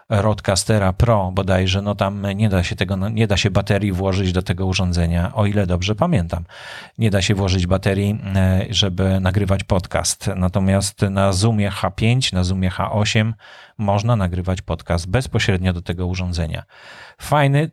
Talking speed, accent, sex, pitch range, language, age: 140 wpm, native, male, 95-110 Hz, Polish, 40-59